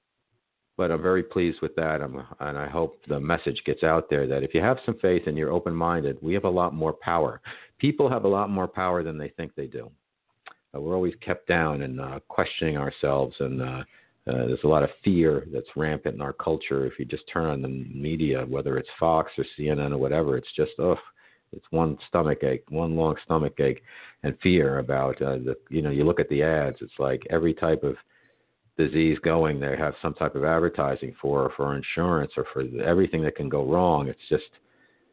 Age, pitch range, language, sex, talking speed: 50-69, 70-85 Hz, English, male, 215 wpm